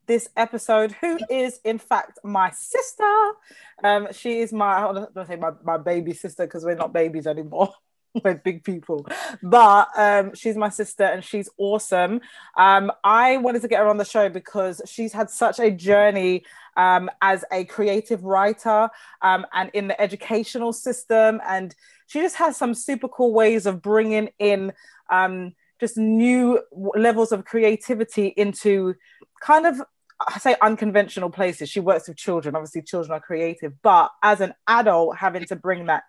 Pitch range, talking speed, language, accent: 190-240 Hz, 165 wpm, English, British